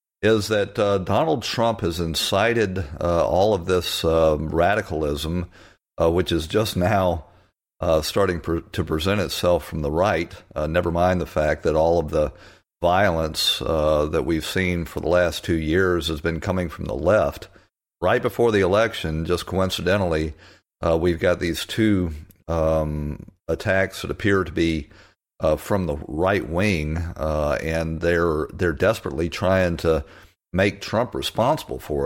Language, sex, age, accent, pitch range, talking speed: English, male, 50-69, American, 80-95 Hz, 155 wpm